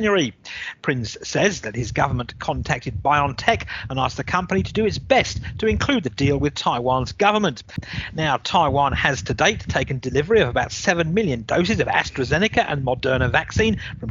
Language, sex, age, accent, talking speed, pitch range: English, male, 50-69, British, 170 wpm, 130-185 Hz